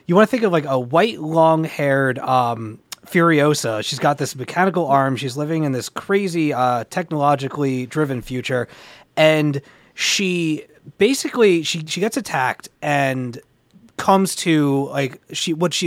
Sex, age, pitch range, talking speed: male, 30-49, 125-160 Hz, 145 wpm